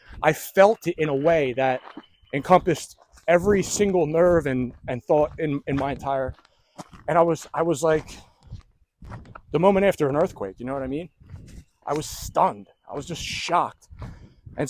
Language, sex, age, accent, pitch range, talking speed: English, male, 30-49, American, 130-175 Hz, 170 wpm